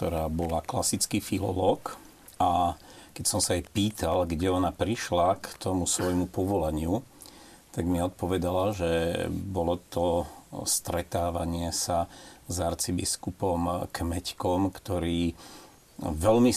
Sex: male